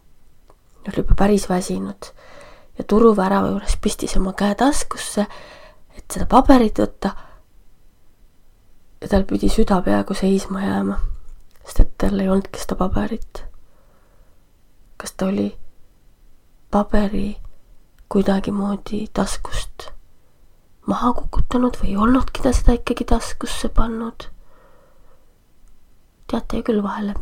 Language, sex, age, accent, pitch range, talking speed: English, female, 20-39, Finnish, 195-230 Hz, 110 wpm